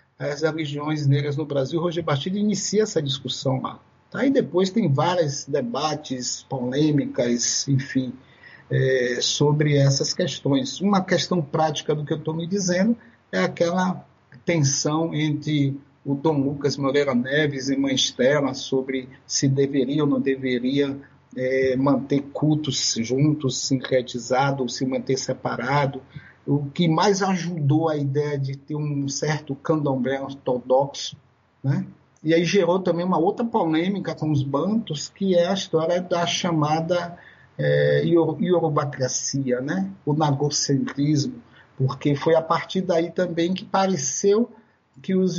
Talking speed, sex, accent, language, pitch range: 140 wpm, male, Brazilian, Portuguese, 135-170 Hz